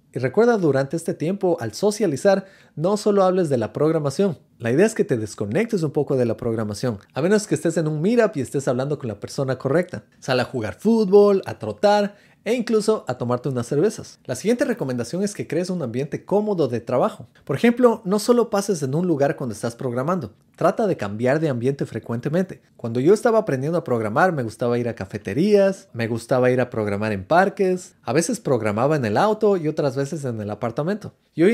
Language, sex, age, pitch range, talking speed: Spanish, male, 30-49, 130-195 Hz, 210 wpm